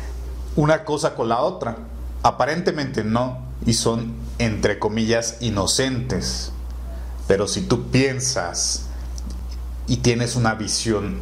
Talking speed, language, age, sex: 105 wpm, Spanish, 40-59, male